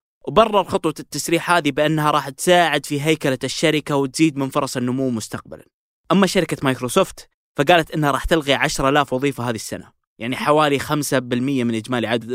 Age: 20-39